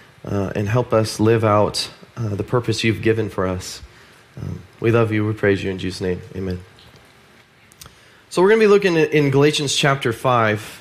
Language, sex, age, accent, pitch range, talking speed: English, male, 20-39, American, 120-150 Hz, 195 wpm